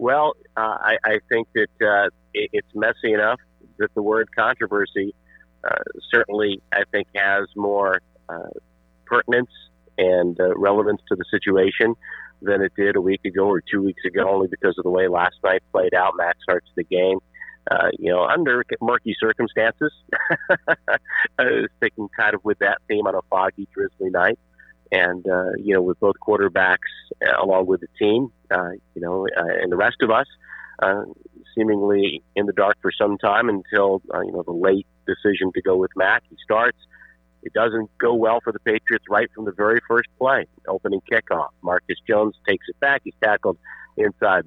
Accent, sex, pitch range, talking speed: American, male, 95-115 Hz, 185 wpm